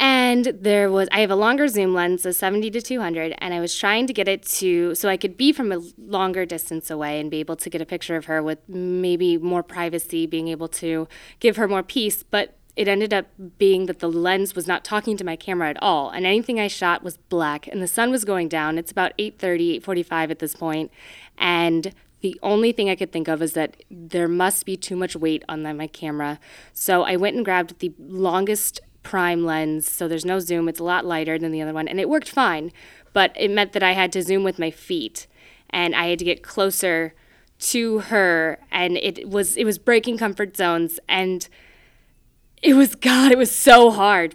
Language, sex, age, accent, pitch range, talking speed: English, female, 20-39, American, 165-200 Hz, 220 wpm